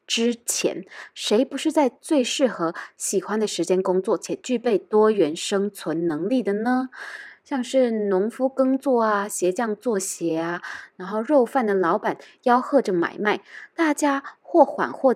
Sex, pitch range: female, 200-295 Hz